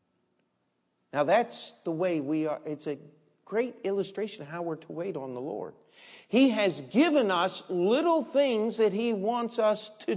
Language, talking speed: English, 170 wpm